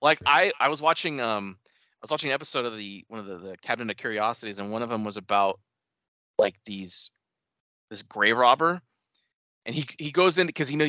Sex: male